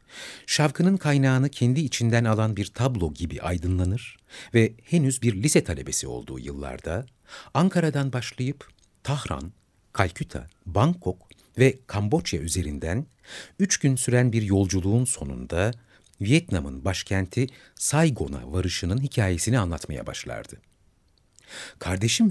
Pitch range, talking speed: 90-125 Hz, 100 wpm